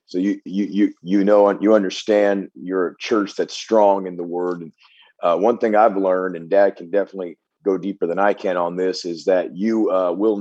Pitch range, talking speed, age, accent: 100-150 Hz, 210 wpm, 40-59, American